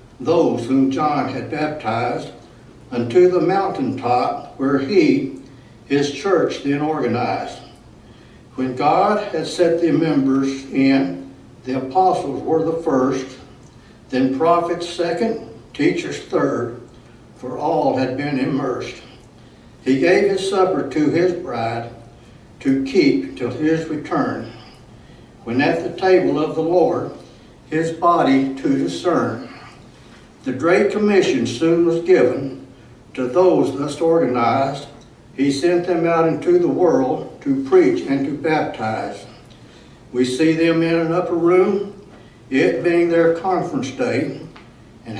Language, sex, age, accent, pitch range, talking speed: English, male, 60-79, American, 130-175 Hz, 125 wpm